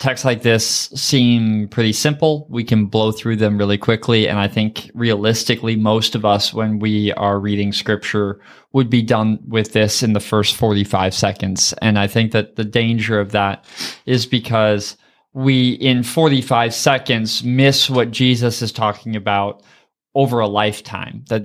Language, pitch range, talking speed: English, 110-130 Hz, 165 wpm